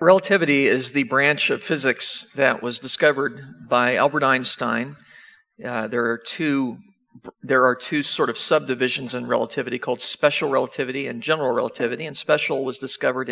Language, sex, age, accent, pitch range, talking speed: English, male, 40-59, American, 125-150 Hz, 155 wpm